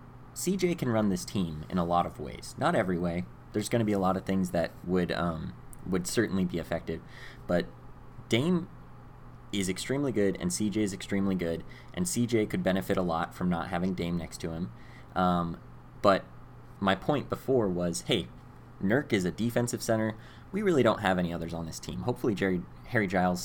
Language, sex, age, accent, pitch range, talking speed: English, male, 20-39, American, 85-115 Hz, 195 wpm